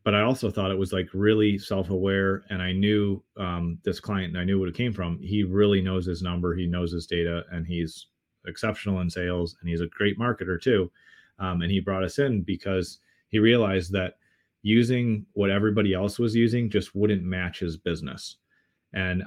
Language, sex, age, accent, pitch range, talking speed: English, male, 30-49, American, 90-105 Hz, 200 wpm